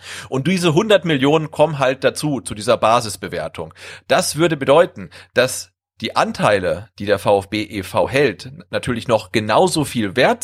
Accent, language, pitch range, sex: German, German, 105-145 Hz, male